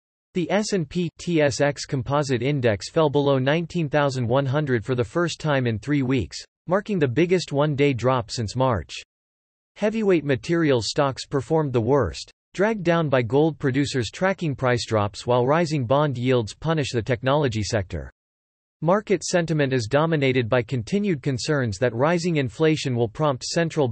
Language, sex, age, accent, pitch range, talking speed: English, male, 40-59, American, 120-160 Hz, 140 wpm